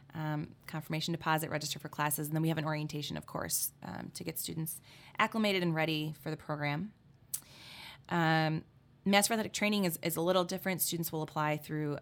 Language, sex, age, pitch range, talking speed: English, female, 20-39, 145-170 Hz, 185 wpm